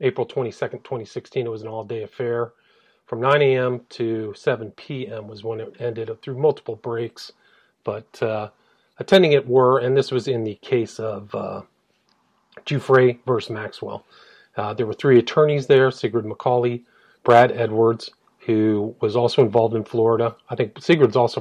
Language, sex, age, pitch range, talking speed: English, male, 40-59, 115-130 Hz, 165 wpm